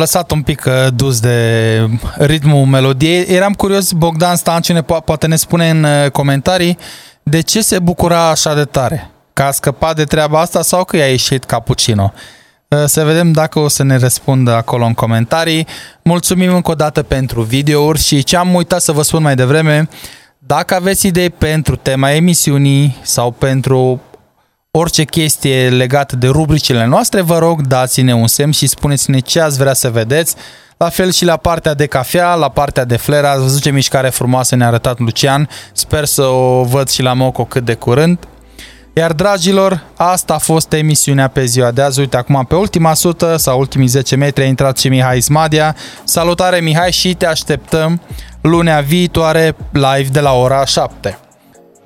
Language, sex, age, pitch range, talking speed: Romanian, male, 20-39, 130-165 Hz, 175 wpm